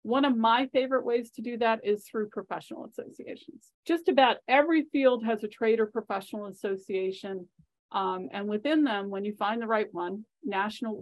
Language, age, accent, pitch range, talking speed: English, 40-59, American, 195-230 Hz, 180 wpm